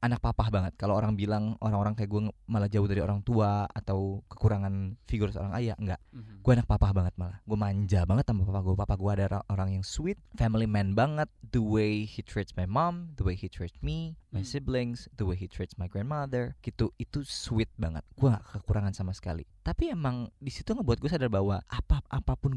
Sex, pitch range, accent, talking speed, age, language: male, 95-125 Hz, native, 200 wpm, 20-39, Indonesian